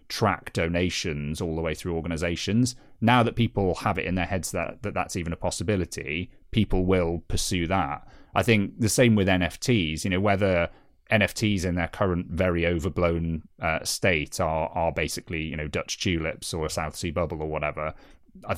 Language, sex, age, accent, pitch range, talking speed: English, male, 30-49, British, 80-100 Hz, 185 wpm